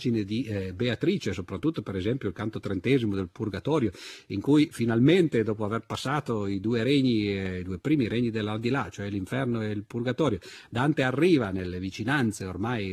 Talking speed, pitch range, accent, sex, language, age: 160 wpm, 100-130 Hz, native, male, Italian, 50-69